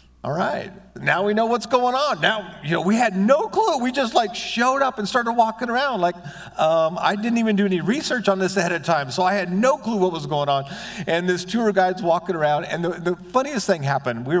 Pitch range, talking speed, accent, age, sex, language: 140-205 Hz, 245 wpm, American, 50-69, male, English